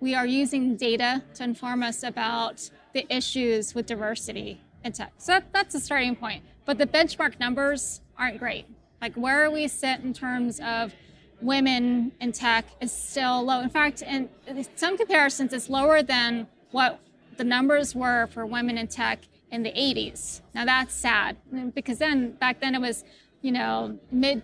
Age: 20-39